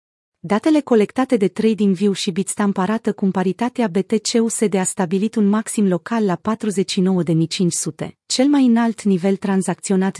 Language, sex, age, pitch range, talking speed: Romanian, female, 30-49, 180-220 Hz, 130 wpm